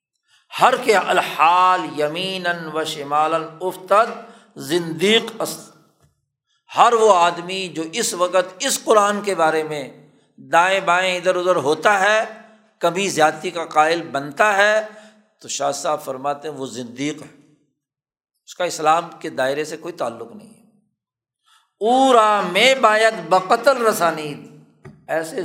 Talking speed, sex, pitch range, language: 130 wpm, male, 160-215 Hz, Urdu